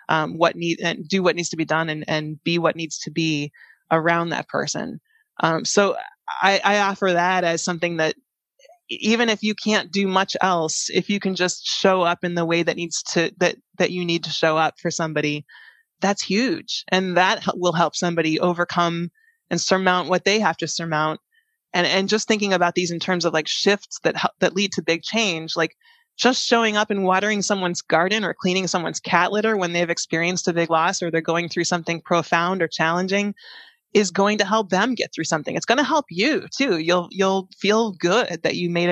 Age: 20-39